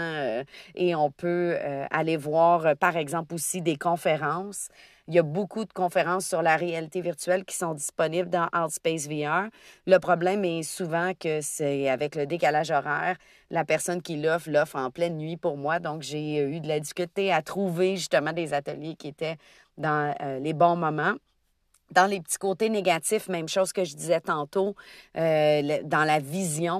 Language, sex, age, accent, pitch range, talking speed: French, female, 40-59, Canadian, 150-180 Hz, 175 wpm